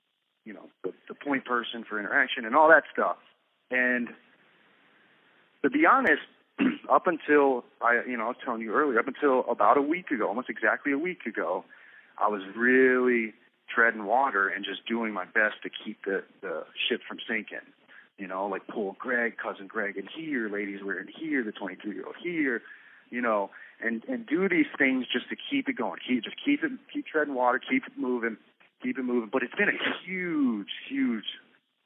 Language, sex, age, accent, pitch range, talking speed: English, male, 40-59, American, 115-170 Hz, 190 wpm